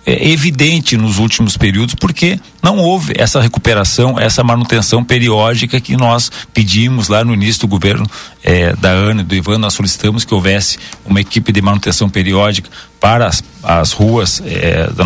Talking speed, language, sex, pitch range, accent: 155 wpm, Portuguese, male, 105-130 Hz, Brazilian